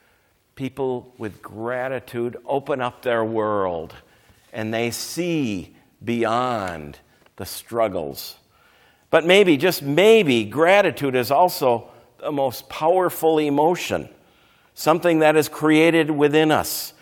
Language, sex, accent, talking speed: English, male, American, 105 wpm